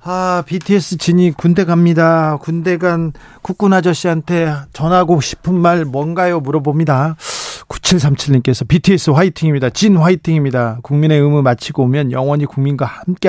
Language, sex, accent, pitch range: Korean, male, native, 135-180 Hz